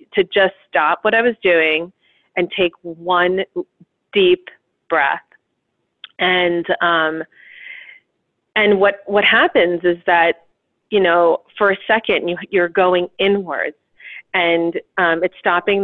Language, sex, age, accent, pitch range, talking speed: English, female, 30-49, American, 160-185 Hz, 125 wpm